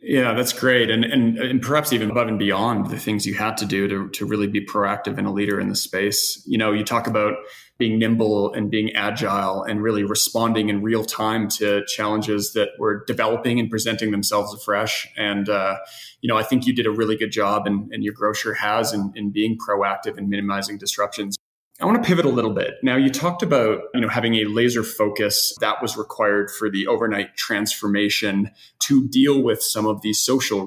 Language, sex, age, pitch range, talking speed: English, male, 20-39, 105-115 Hz, 210 wpm